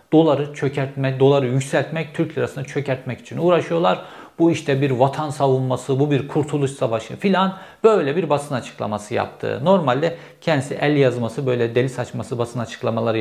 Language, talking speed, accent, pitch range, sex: Turkish, 150 wpm, native, 120-160 Hz, male